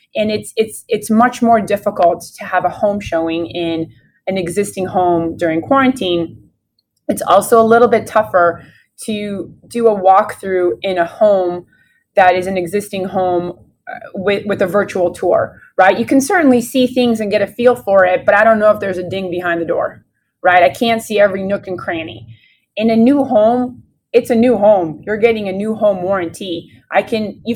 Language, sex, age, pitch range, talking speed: English, female, 20-39, 175-220 Hz, 195 wpm